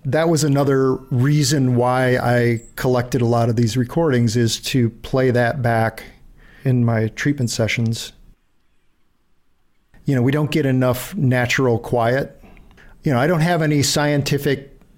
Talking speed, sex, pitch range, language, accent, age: 145 wpm, male, 120-135 Hz, English, American, 50-69